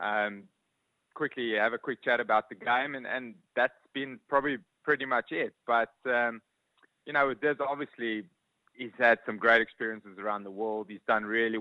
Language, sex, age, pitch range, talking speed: English, male, 20-39, 110-130 Hz, 175 wpm